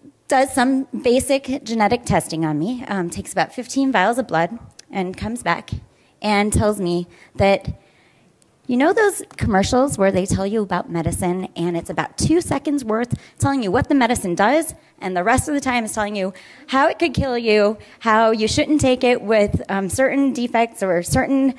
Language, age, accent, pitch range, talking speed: English, 30-49, American, 195-270 Hz, 190 wpm